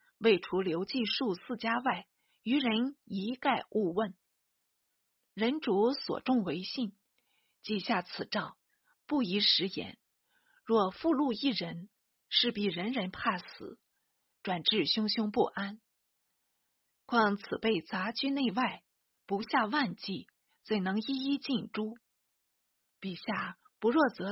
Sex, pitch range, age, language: female, 195-260 Hz, 50-69, Chinese